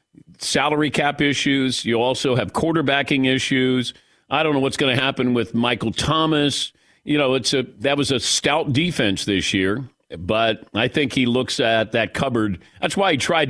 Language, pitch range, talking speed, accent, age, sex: English, 115-150 Hz, 180 wpm, American, 50-69, male